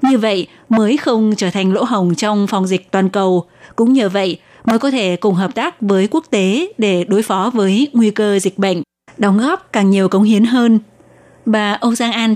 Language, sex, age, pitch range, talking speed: Vietnamese, female, 20-39, 195-240 Hz, 215 wpm